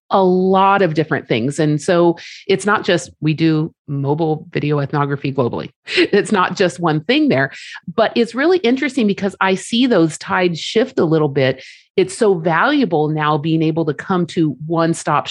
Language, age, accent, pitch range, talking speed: English, 40-59, American, 160-205 Hz, 180 wpm